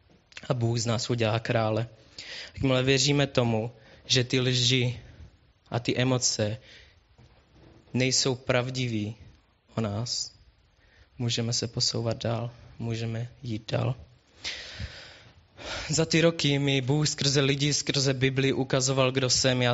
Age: 20-39